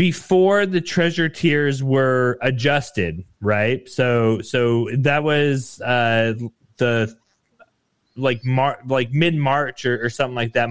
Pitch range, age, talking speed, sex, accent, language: 125-155 Hz, 20-39, 130 wpm, male, American, English